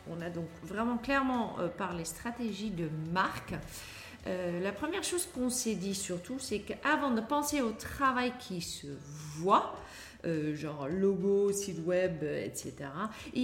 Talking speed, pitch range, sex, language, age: 150 wpm, 175-245 Hz, female, French, 40-59